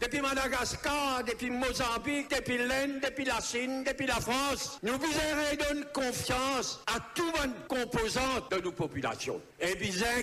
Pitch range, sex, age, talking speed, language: 195-275 Hz, male, 60-79, 155 wpm, English